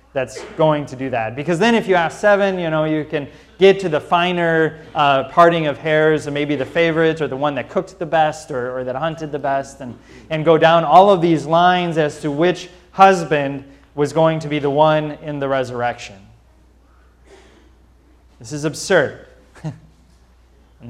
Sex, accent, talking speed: male, American, 185 wpm